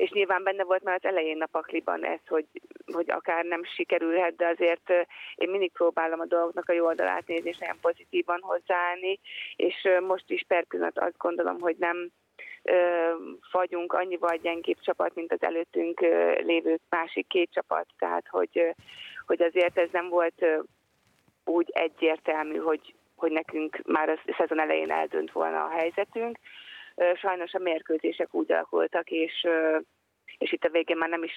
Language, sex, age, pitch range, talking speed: Hungarian, female, 30-49, 165-195 Hz, 155 wpm